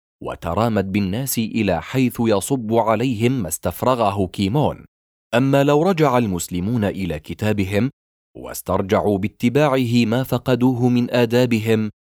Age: 30-49